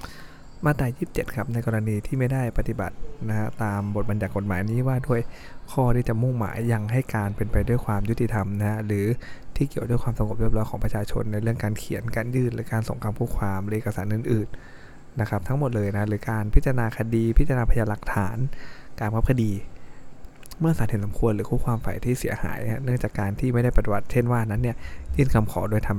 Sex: male